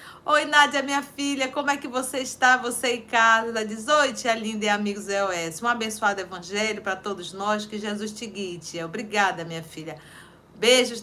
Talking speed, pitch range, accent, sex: 190 wpm, 195-255 Hz, Brazilian, female